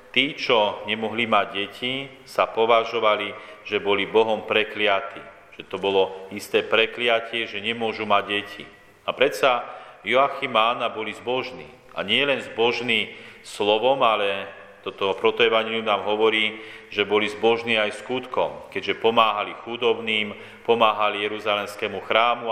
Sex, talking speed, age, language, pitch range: male, 125 wpm, 40-59, Slovak, 105-125 Hz